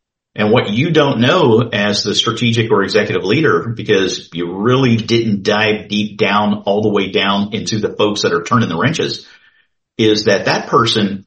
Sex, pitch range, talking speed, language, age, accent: male, 105-145 Hz, 180 wpm, English, 50-69, American